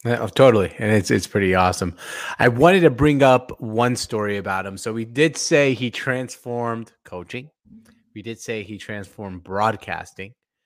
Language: English